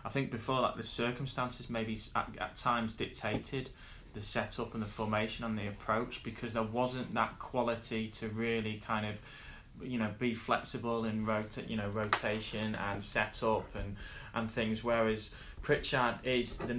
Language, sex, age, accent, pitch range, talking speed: English, male, 20-39, British, 105-120 Hz, 170 wpm